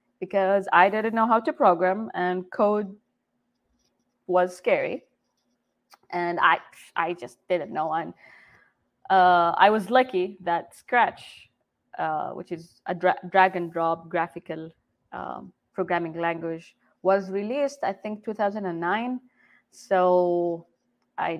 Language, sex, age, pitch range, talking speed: English, female, 20-39, 175-235 Hz, 120 wpm